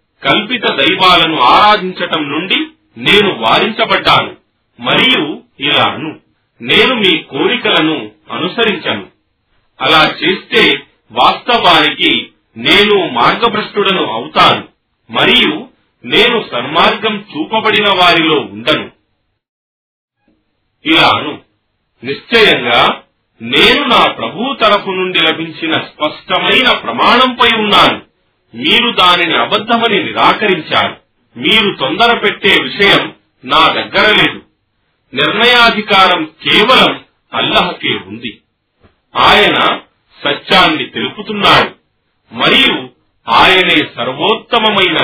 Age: 40-59